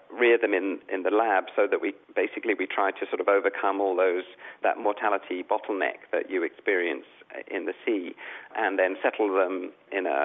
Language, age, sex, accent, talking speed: English, 40-59, male, British, 195 wpm